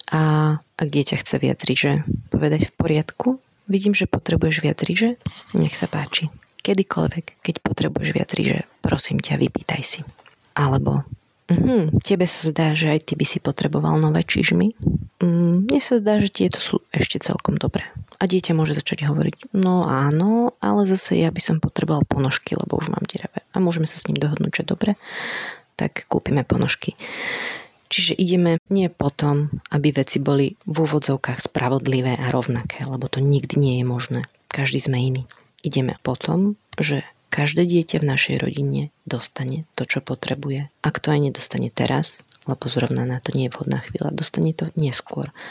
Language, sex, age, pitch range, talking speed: Slovak, female, 30-49, 135-175 Hz, 170 wpm